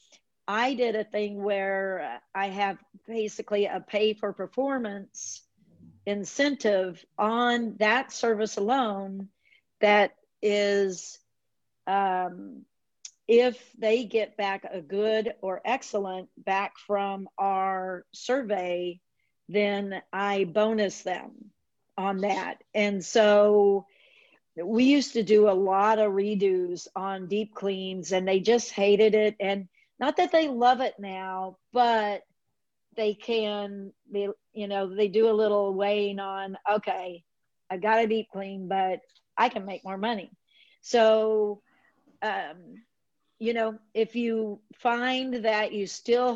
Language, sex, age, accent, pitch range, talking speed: English, female, 50-69, American, 195-225 Hz, 125 wpm